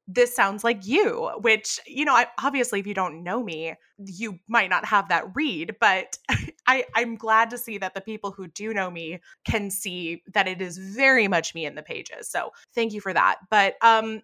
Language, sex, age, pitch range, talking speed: English, female, 20-39, 195-265 Hz, 215 wpm